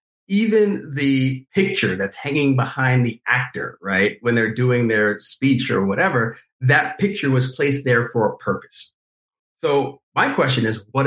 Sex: male